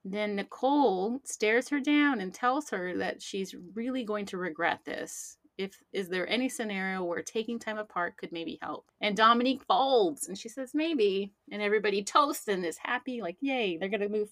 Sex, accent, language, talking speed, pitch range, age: female, American, English, 195 wpm, 180-225 Hz, 30-49